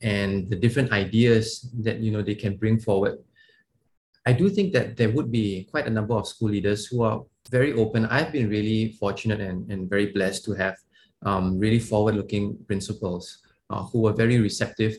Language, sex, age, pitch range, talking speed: English, male, 20-39, 100-120 Hz, 190 wpm